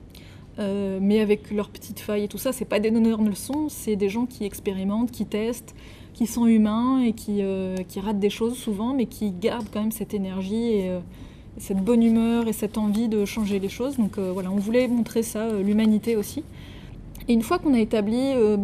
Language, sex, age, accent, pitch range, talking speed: French, female, 20-39, French, 200-235 Hz, 220 wpm